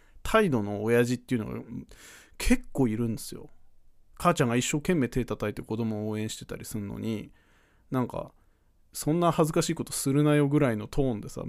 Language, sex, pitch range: Japanese, male, 105-160 Hz